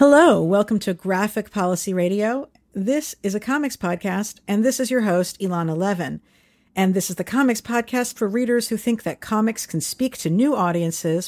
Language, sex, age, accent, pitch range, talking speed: English, female, 50-69, American, 170-225 Hz, 185 wpm